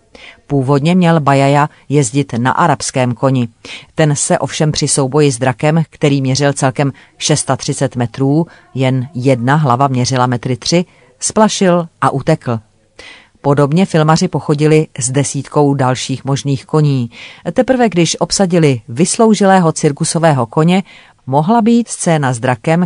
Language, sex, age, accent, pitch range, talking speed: Czech, female, 40-59, native, 130-160 Hz, 125 wpm